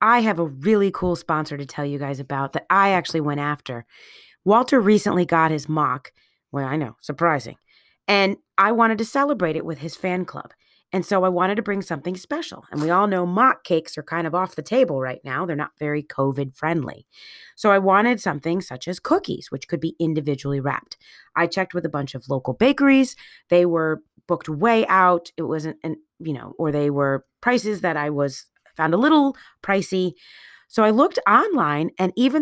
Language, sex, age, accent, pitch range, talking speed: English, female, 30-49, American, 155-215 Hz, 200 wpm